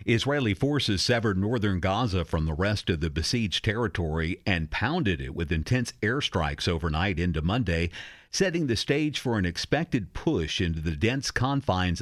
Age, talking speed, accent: 50-69, 160 wpm, American